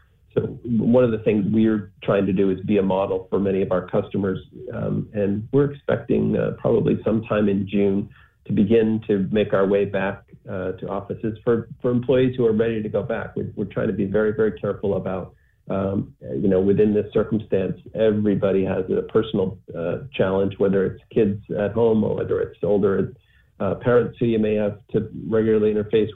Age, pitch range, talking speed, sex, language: 40-59, 100-110 Hz, 195 wpm, male, English